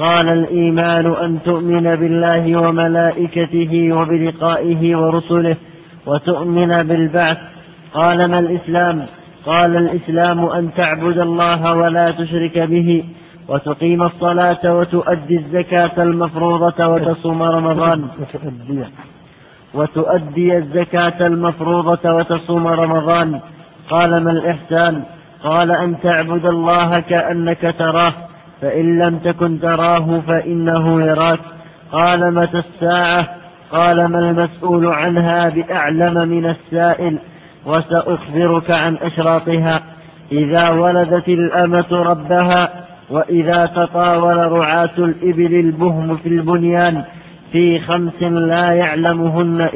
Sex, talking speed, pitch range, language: male, 90 wpm, 165-175 Hz, Arabic